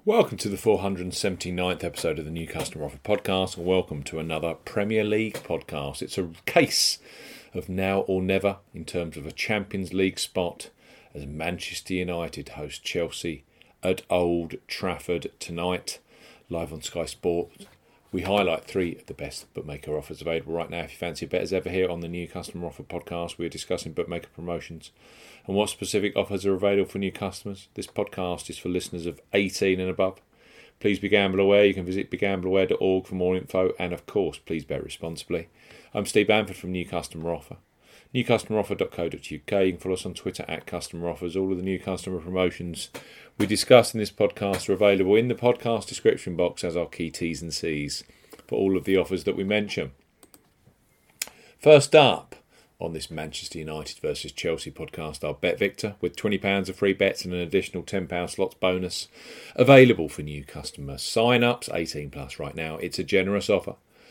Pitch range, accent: 85-100 Hz, British